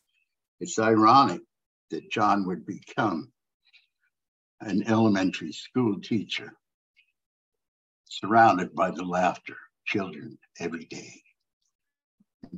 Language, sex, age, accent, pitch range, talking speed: English, male, 60-79, American, 95-115 Hz, 90 wpm